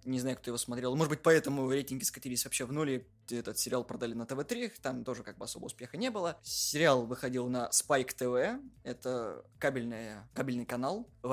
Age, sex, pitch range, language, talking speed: 20-39, male, 130-185 Hz, Russian, 185 wpm